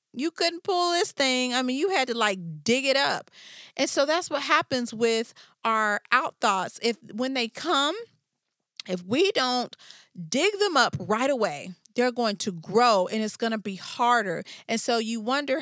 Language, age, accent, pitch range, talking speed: English, 40-59, American, 200-260 Hz, 190 wpm